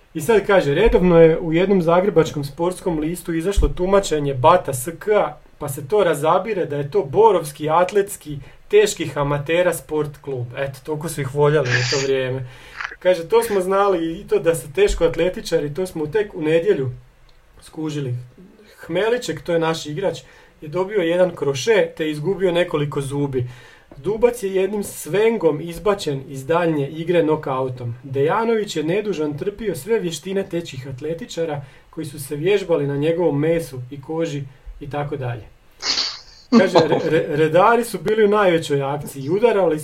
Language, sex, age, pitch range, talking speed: Croatian, male, 40-59, 145-185 Hz, 150 wpm